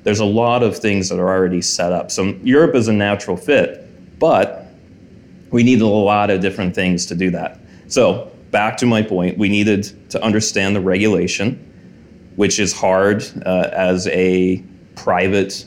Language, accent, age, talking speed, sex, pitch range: English, American, 30-49, 170 wpm, male, 95-110 Hz